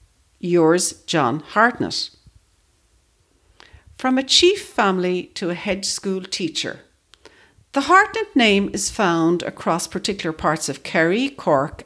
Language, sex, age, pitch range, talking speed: English, female, 60-79, 165-235 Hz, 115 wpm